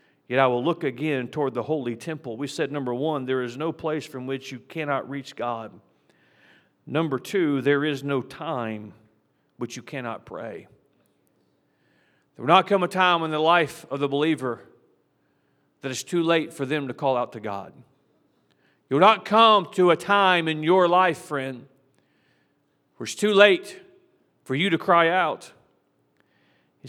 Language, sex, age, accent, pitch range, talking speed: English, male, 40-59, American, 150-210 Hz, 170 wpm